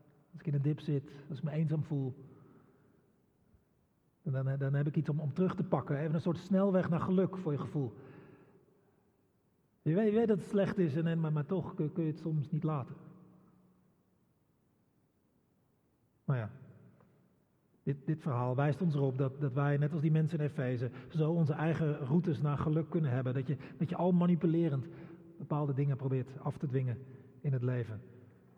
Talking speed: 190 wpm